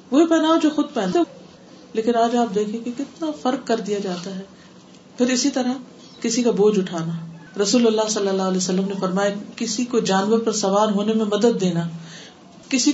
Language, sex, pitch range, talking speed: Urdu, female, 190-240 Hz, 195 wpm